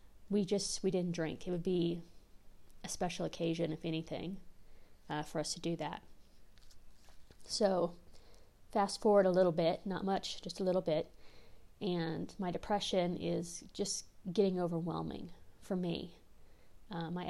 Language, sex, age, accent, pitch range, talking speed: English, female, 30-49, American, 165-190 Hz, 145 wpm